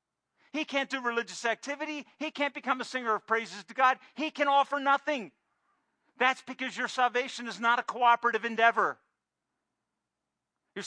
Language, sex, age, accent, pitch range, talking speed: English, male, 50-69, American, 175-245 Hz, 155 wpm